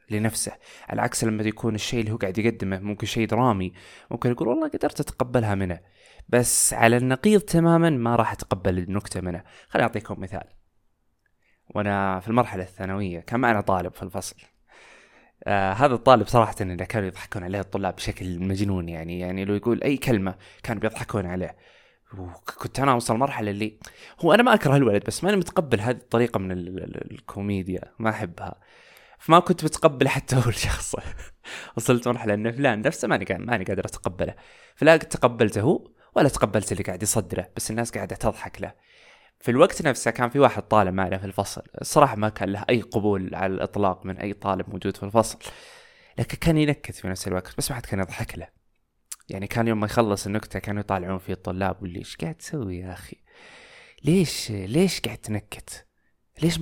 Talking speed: 175 wpm